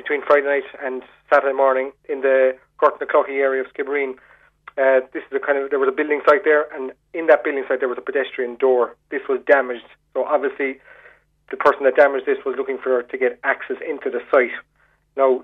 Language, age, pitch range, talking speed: English, 30-49, 130-160 Hz, 205 wpm